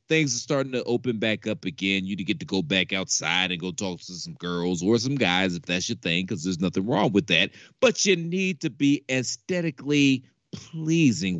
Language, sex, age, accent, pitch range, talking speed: English, male, 30-49, American, 95-140 Hz, 220 wpm